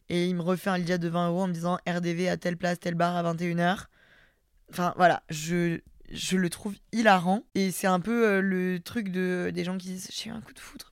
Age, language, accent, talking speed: 20-39, French, French, 255 wpm